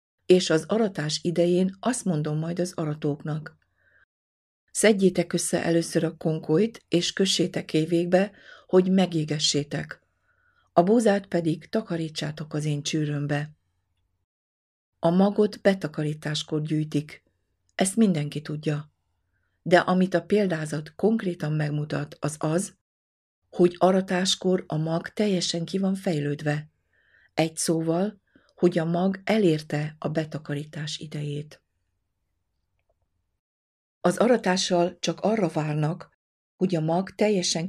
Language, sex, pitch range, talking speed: Hungarian, female, 150-185 Hz, 105 wpm